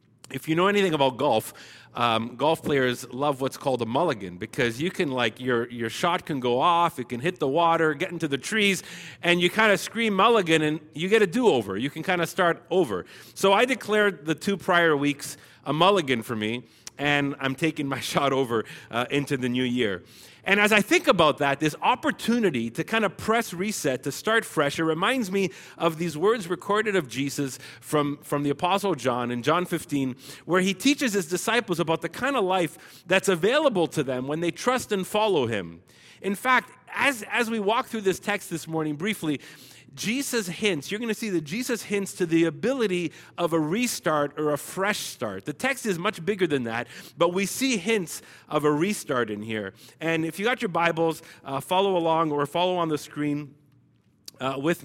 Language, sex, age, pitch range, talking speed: English, male, 40-59, 135-190 Hz, 205 wpm